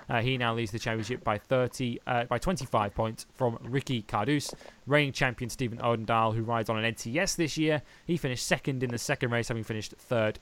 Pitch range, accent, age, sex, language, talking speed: 115-140 Hz, British, 20-39, male, English, 205 wpm